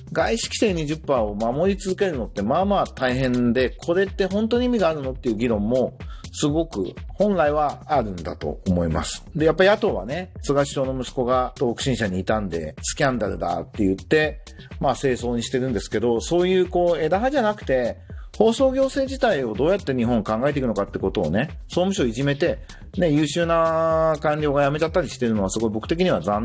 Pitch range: 115-195 Hz